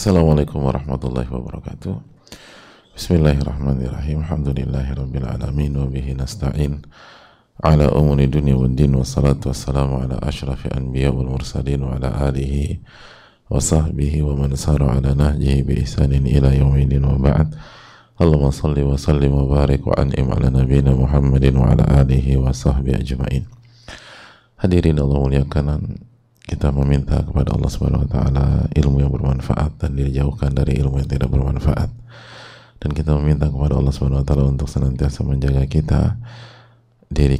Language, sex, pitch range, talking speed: English, male, 70-75 Hz, 125 wpm